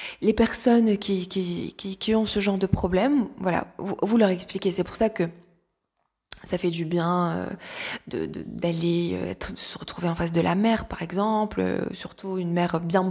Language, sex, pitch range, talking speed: French, female, 185-225 Hz, 200 wpm